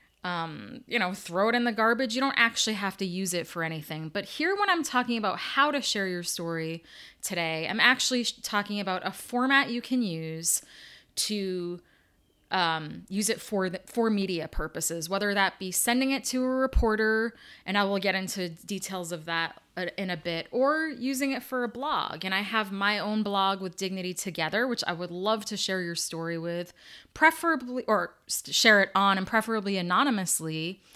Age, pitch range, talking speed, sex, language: 20-39, 170-225 Hz, 190 wpm, female, English